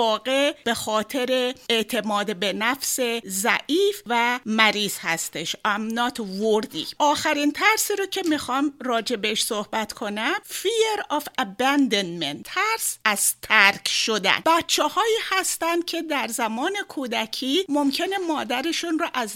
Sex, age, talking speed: female, 50-69, 110 wpm